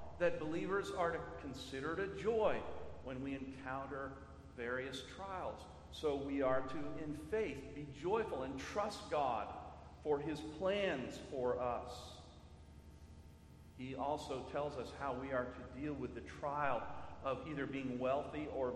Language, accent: English, American